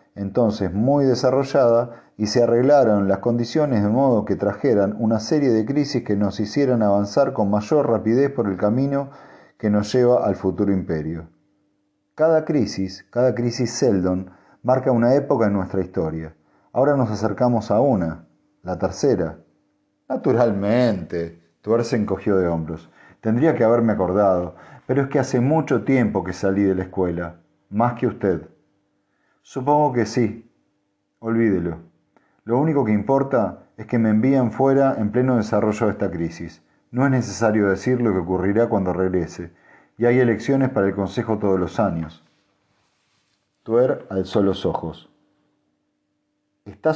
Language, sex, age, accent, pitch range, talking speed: Spanish, male, 40-59, Argentinian, 95-125 Hz, 145 wpm